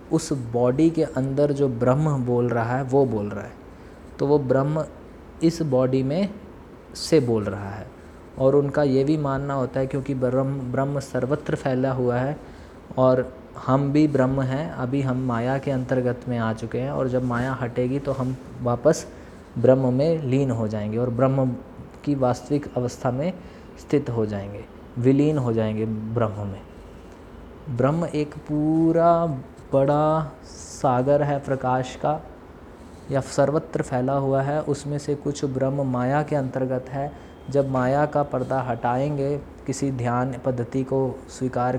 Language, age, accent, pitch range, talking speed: Hindi, 20-39, native, 120-140 Hz, 155 wpm